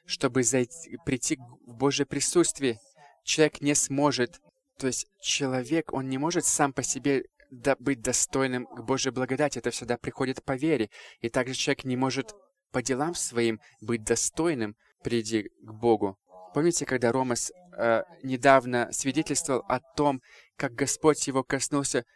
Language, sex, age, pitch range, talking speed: English, male, 20-39, 120-145 Hz, 140 wpm